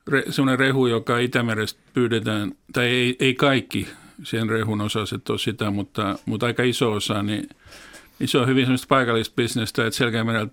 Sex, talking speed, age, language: male, 170 wpm, 50-69, Finnish